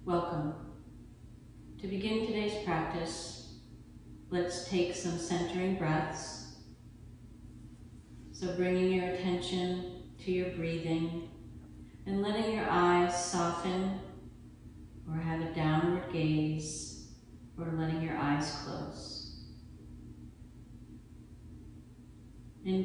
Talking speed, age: 85 wpm, 40-59